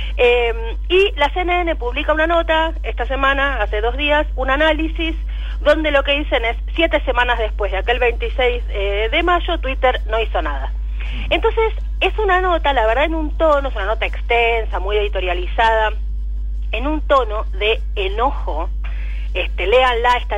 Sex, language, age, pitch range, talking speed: female, Spanish, 30-49, 210-320 Hz, 160 wpm